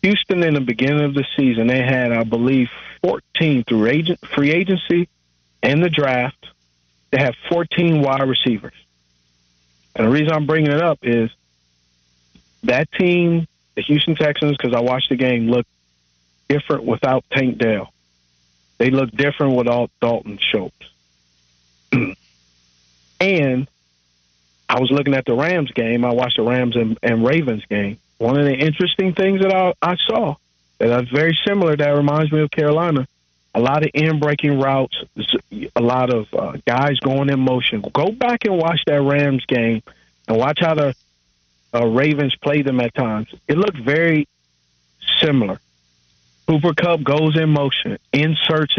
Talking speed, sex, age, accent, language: 155 wpm, male, 40-59, American, English